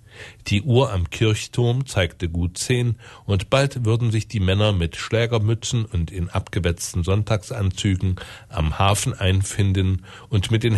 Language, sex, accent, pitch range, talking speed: German, male, German, 95-115 Hz, 140 wpm